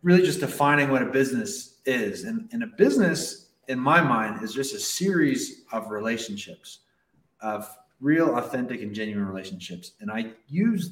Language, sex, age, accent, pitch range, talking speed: English, male, 30-49, American, 110-165 Hz, 160 wpm